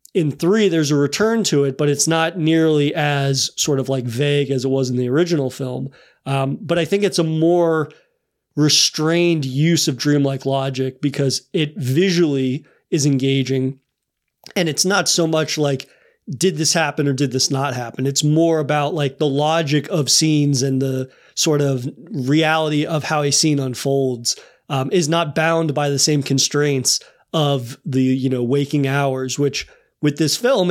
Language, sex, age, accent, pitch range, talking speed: English, male, 30-49, American, 135-160 Hz, 175 wpm